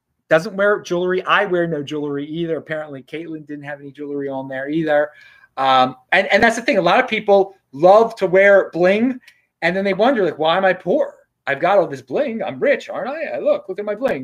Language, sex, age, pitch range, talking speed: English, male, 30-49, 140-210 Hz, 230 wpm